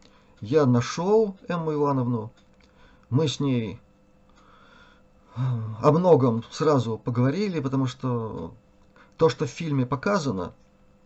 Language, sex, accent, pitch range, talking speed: Russian, male, native, 120-160 Hz, 100 wpm